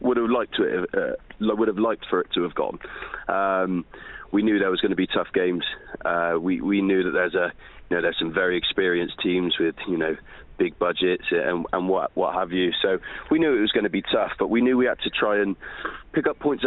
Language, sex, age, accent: English, male, 30-49, British